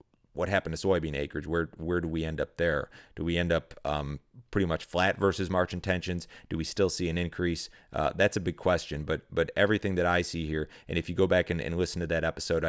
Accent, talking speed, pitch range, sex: American, 245 wpm, 80-90 Hz, male